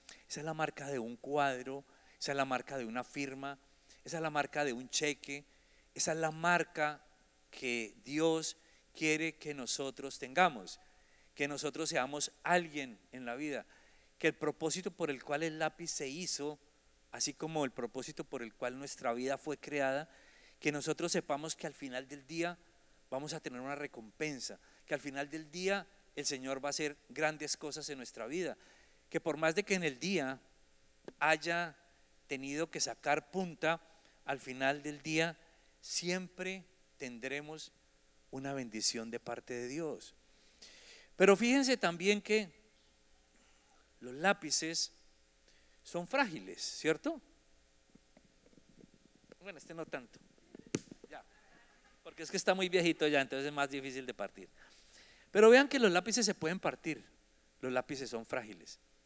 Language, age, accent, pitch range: English, 40-59, Colombian, 125-165 Hz